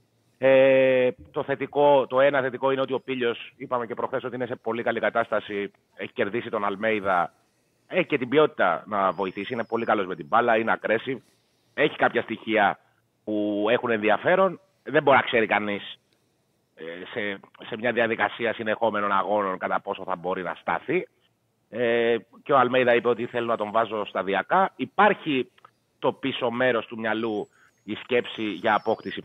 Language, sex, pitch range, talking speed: Greek, male, 110-150 Hz, 165 wpm